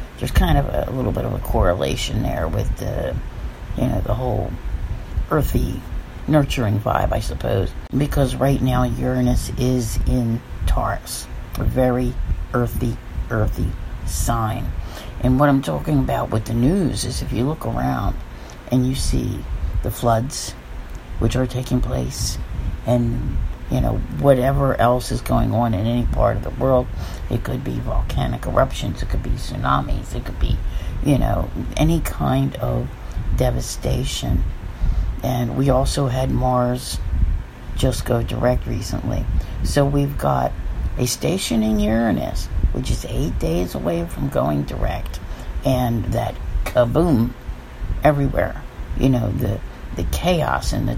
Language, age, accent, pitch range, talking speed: English, 50-69, American, 85-125 Hz, 145 wpm